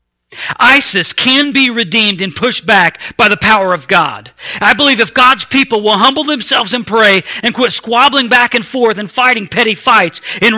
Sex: male